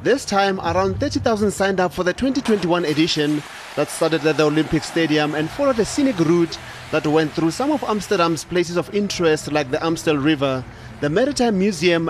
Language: English